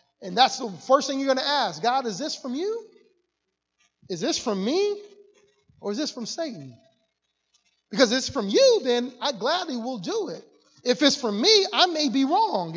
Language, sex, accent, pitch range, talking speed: English, male, American, 180-255 Hz, 195 wpm